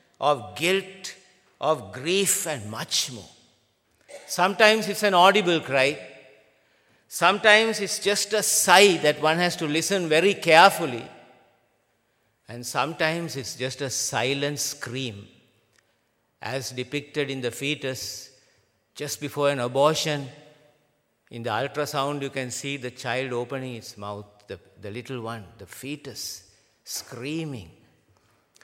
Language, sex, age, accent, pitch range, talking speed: English, male, 50-69, Indian, 120-180 Hz, 120 wpm